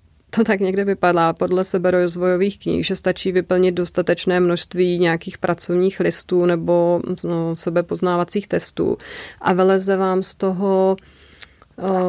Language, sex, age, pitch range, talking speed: Czech, female, 30-49, 175-200 Hz, 130 wpm